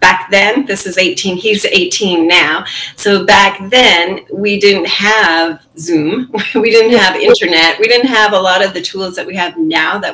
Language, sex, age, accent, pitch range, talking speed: English, female, 30-49, American, 175-230 Hz, 190 wpm